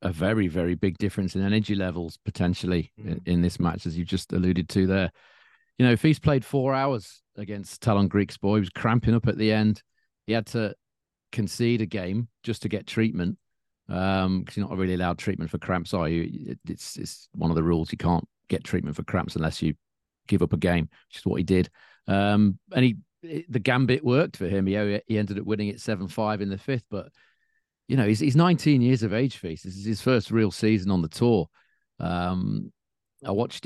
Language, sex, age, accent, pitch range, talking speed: English, male, 40-59, British, 90-110 Hz, 220 wpm